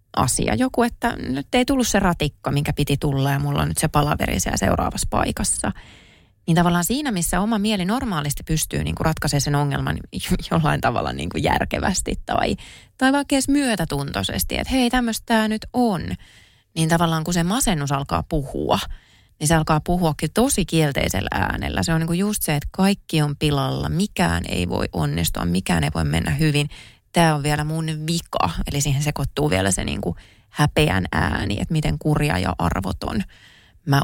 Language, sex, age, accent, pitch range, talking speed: Finnish, female, 30-49, native, 105-175 Hz, 175 wpm